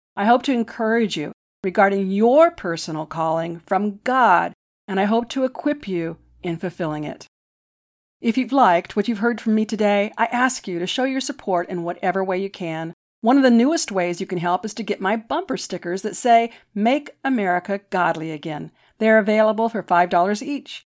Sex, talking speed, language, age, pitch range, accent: female, 190 wpm, English, 50-69, 180-240 Hz, American